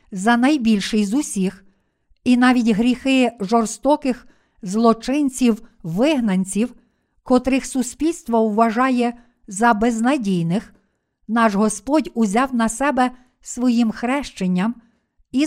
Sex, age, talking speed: female, 50-69, 85 wpm